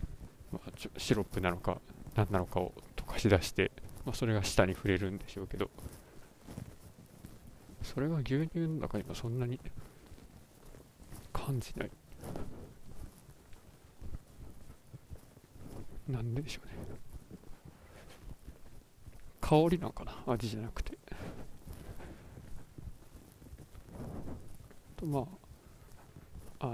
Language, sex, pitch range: Japanese, male, 100-135 Hz